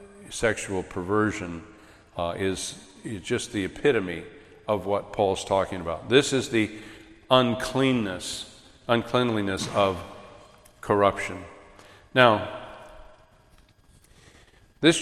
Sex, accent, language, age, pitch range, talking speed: male, American, English, 50-69, 100-130 Hz, 85 wpm